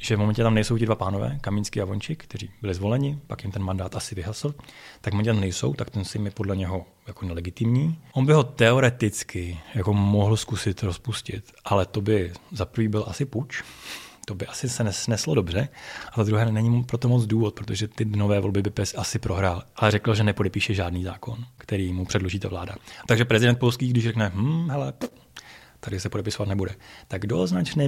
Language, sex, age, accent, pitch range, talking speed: Czech, male, 30-49, native, 95-115 Hz, 210 wpm